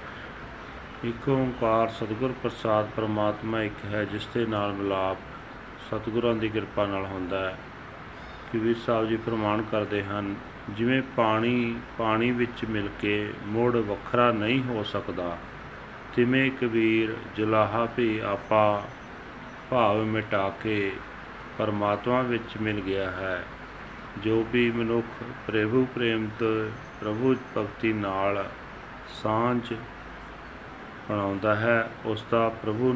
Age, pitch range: 40-59, 105-115 Hz